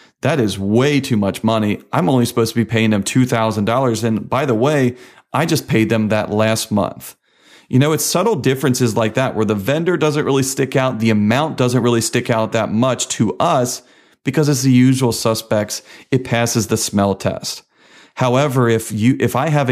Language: English